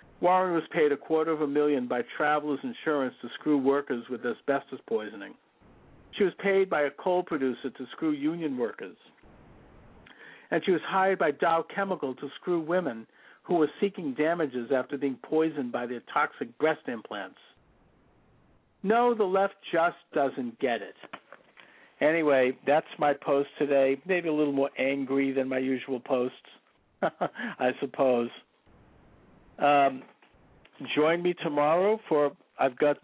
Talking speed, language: 145 wpm, English